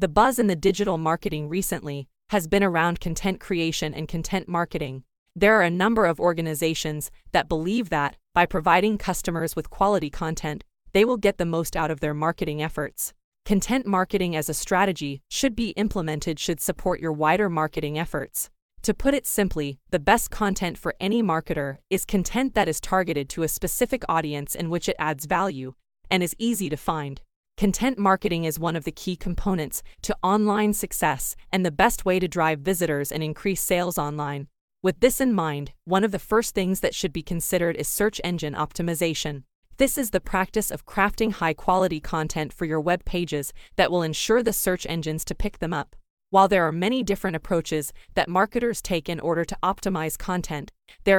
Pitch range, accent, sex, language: 155-195 Hz, American, female, English